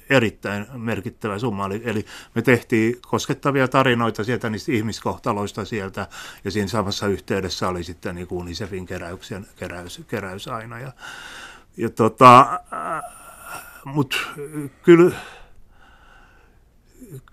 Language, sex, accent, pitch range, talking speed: Finnish, male, native, 95-120 Hz, 105 wpm